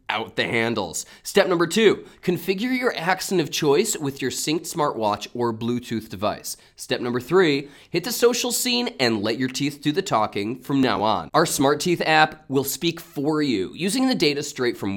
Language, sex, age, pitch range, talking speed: English, male, 20-39, 125-210 Hz, 195 wpm